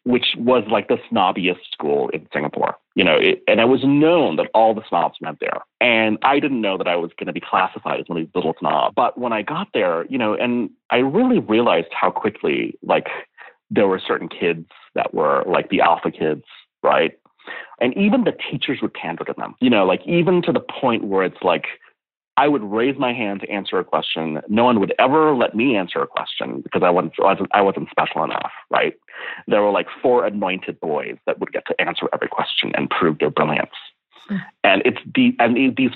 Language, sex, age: English, male, 30-49